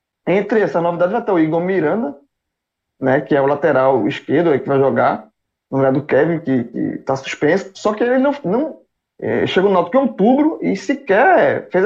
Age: 20-39